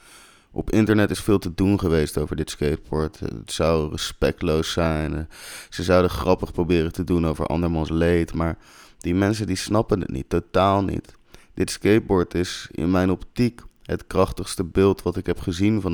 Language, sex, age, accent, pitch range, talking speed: Dutch, male, 30-49, Dutch, 80-100 Hz, 175 wpm